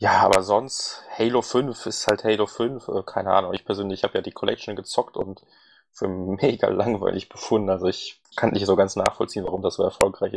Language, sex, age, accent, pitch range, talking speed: German, male, 20-39, German, 95-115 Hz, 195 wpm